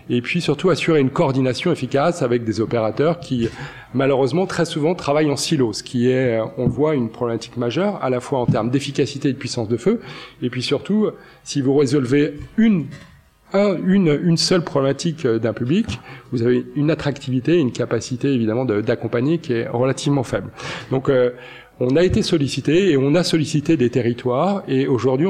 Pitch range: 120-150 Hz